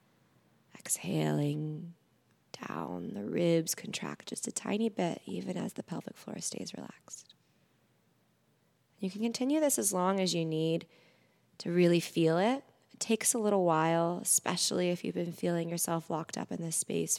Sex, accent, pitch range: female, American, 160-190 Hz